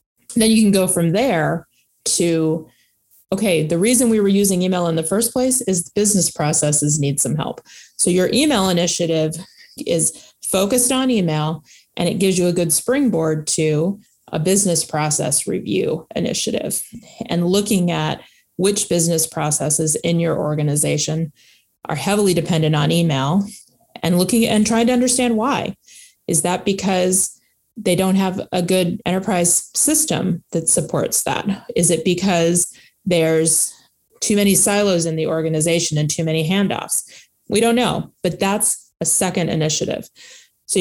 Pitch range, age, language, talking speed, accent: 165-205 Hz, 20-39, English, 150 wpm, American